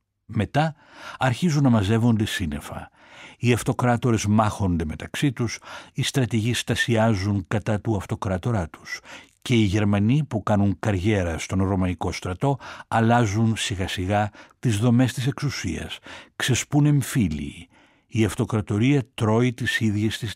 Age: 60-79